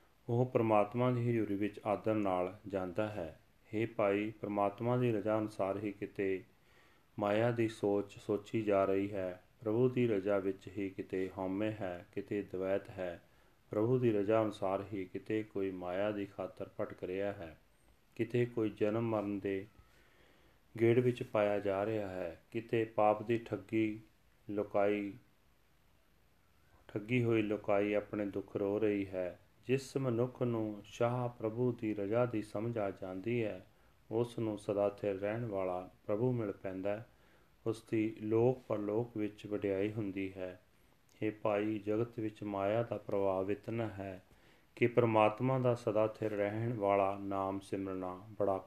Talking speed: 150 wpm